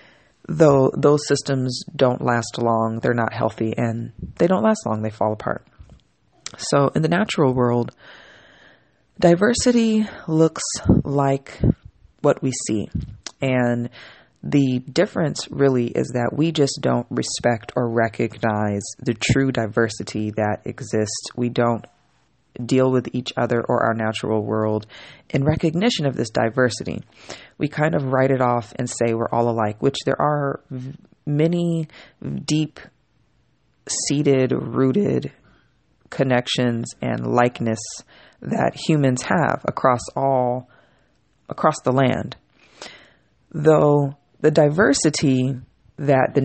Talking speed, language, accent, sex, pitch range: 120 wpm, English, American, female, 115-145 Hz